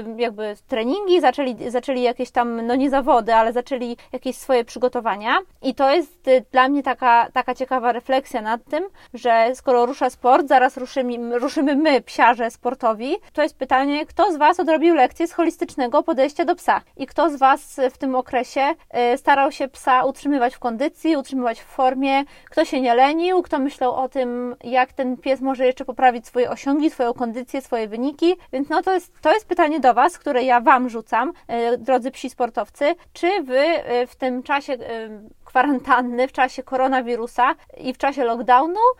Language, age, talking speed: Polish, 20-39, 170 wpm